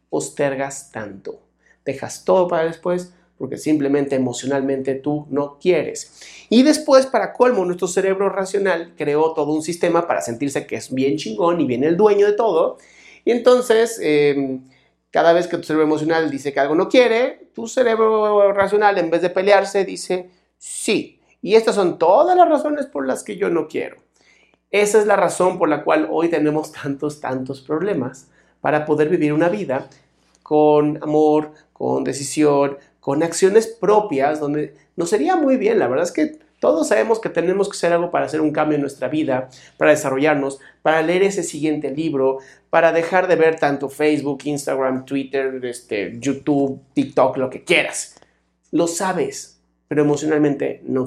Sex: male